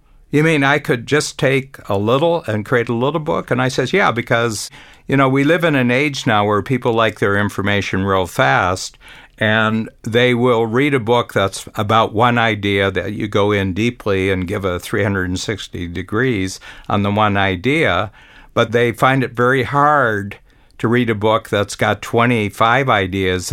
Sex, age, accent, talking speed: male, 60-79, American, 180 wpm